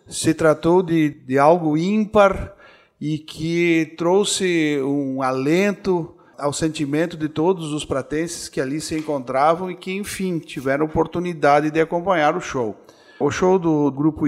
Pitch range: 145-185 Hz